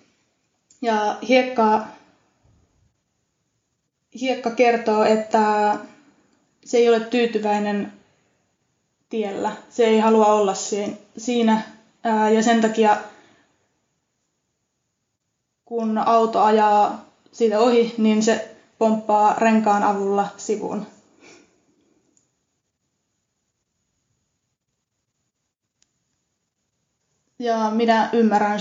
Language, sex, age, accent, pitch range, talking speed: Finnish, female, 20-39, native, 215-235 Hz, 65 wpm